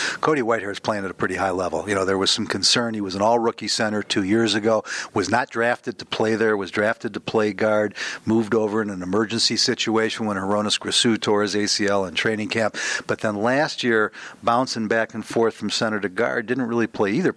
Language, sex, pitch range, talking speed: English, male, 105-120 Hz, 225 wpm